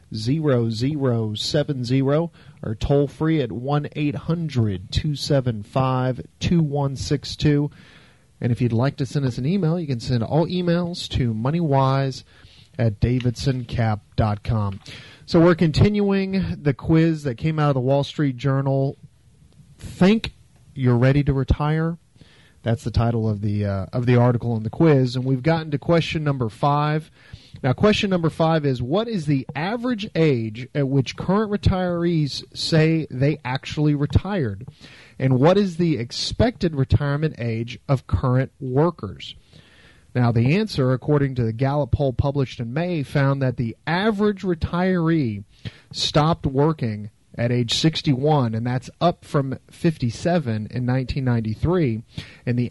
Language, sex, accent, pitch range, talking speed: English, male, American, 120-160 Hz, 150 wpm